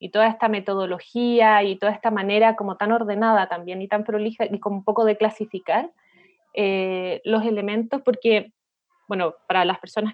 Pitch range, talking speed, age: 205-255 Hz, 170 wpm, 20-39